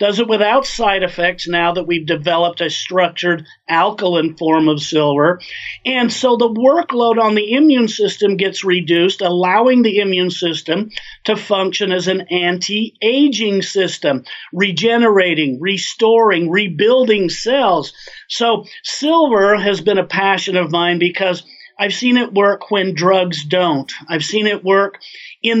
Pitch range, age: 175-215 Hz, 50-69